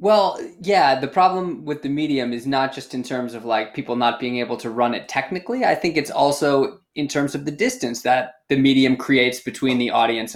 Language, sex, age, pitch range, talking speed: English, male, 20-39, 125-150 Hz, 220 wpm